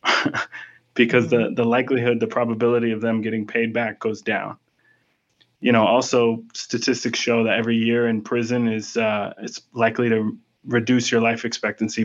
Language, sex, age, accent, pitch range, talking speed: English, male, 20-39, American, 110-125 Hz, 160 wpm